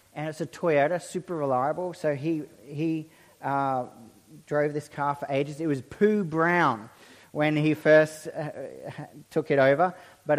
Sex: male